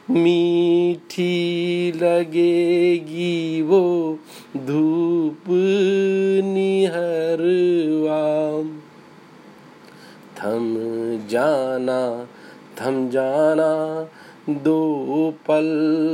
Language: Hindi